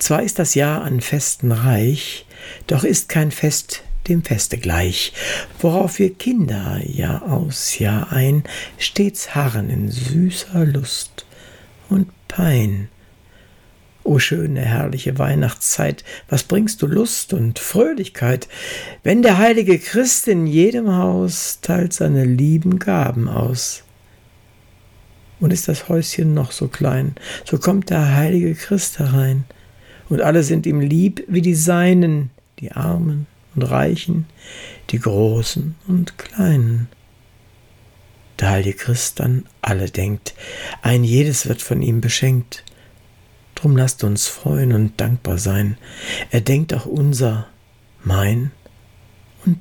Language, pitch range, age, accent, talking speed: German, 110-160 Hz, 60-79, German, 125 wpm